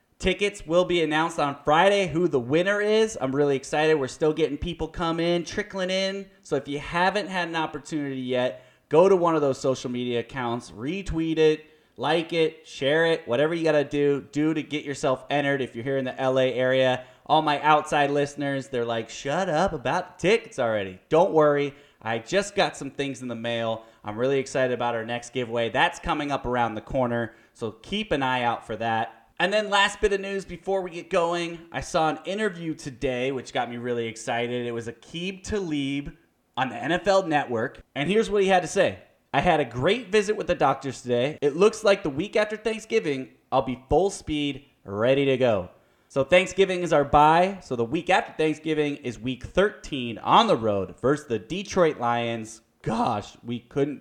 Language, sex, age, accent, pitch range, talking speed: English, male, 20-39, American, 125-170 Hz, 200 wpm